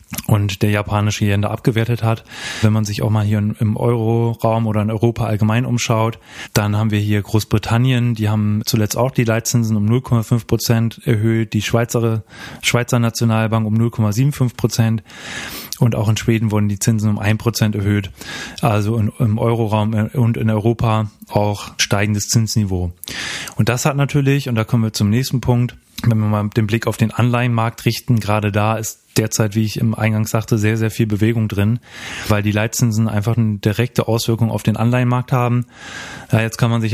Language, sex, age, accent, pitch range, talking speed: German, male, 20-39, German, 110-120 Hz, 180 wpm